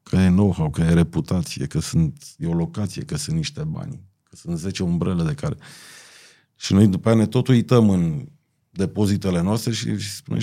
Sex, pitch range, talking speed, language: male, 95-135 Hz, 190 wpm, Romanian